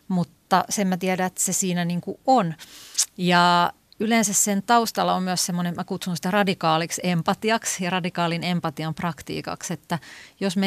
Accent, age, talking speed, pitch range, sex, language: native, 30-49, 155 wpm, 160-200 Hz, female, Finnish